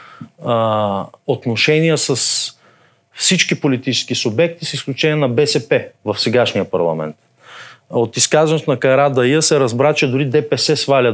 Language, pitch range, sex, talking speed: Bulgarian, 125-175 Hz, male, 125 wpm